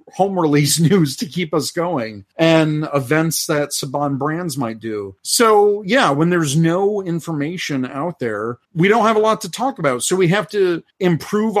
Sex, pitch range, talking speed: male, 135-175 Hz, 180 wpm